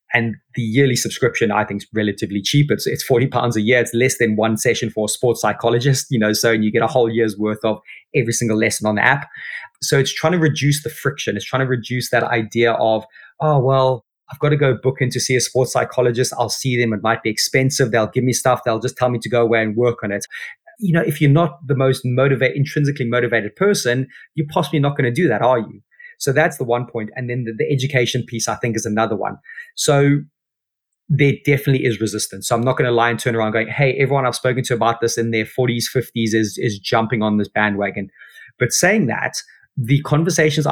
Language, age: English, 20-39